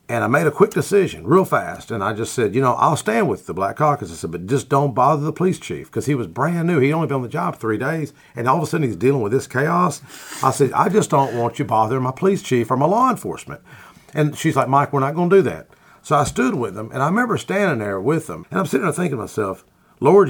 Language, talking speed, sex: English, 285 wpm, male